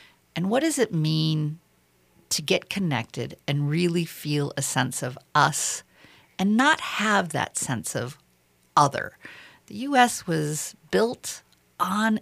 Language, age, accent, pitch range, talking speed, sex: English, 50-69, American, 145-190 Hz, 135 wpm, female